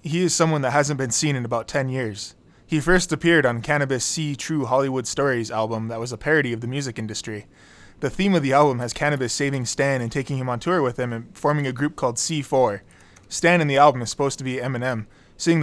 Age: 20-39